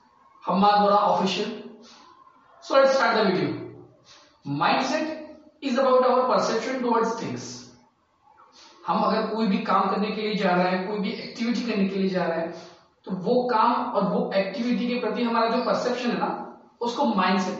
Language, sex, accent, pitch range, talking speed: Hindi, male, native, 185-250 Hz, 160 wpm